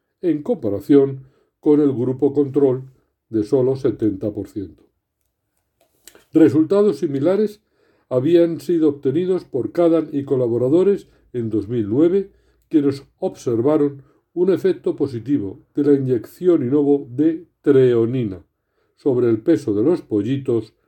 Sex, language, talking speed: male, Spanish, 105 wpm